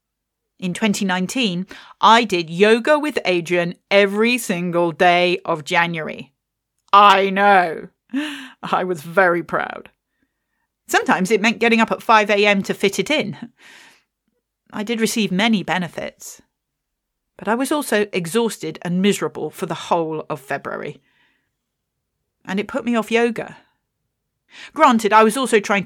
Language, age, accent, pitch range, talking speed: English, 40-59, British, 175-225 Hz, 130 wpm